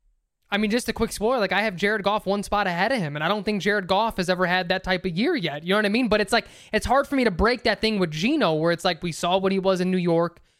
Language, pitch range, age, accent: English, 180-220 Hz, 20-39, American